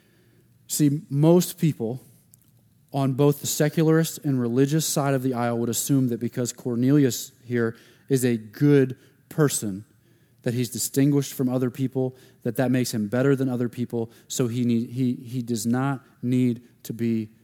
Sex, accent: male, American